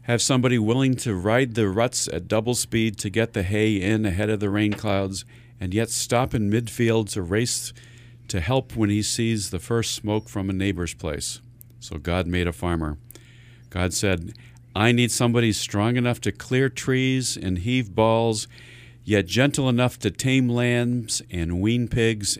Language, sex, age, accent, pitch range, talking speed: English, male, 50-69, American, 100-120 Hz, 175 wpm